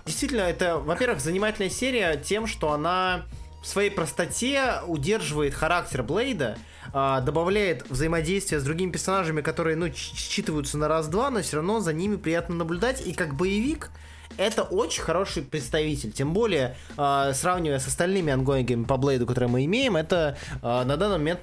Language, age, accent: Russian, 20-39, native